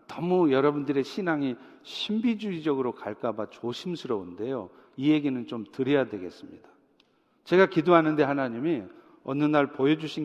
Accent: native